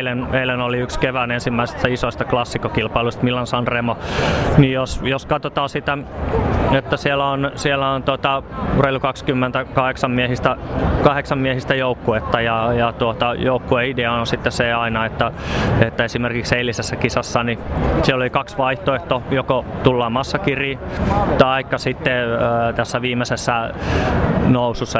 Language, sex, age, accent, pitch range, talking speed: Finnish, male, 30-49, native, 115-135 Hz, 130 wpm